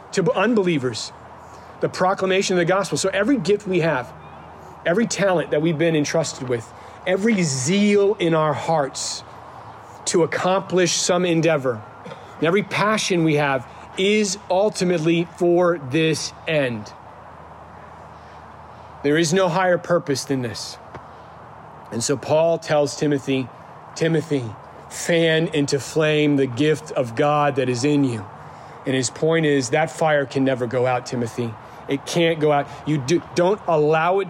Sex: male